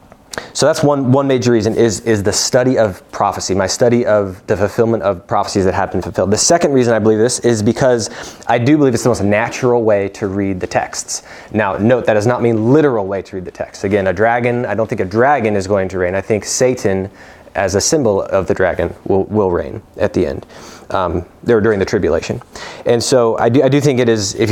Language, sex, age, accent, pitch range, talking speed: English, male, 20-39, American, 100-125 Hz, 235 wpm